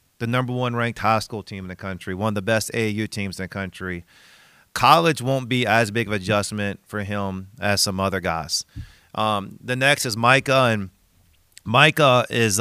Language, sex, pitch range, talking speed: English, male, 100-125 Hz, 195 wpm